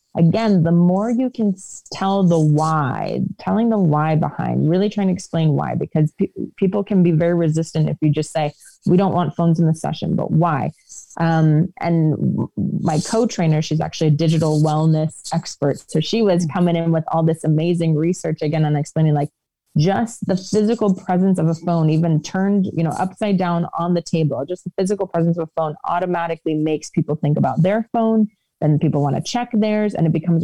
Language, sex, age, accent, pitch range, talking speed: English, female, 30-49, American, 155-185 Hz, 200 wpm